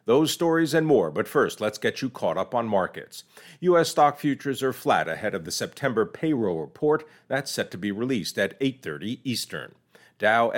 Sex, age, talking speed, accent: male, 50-69, 185 wpm, American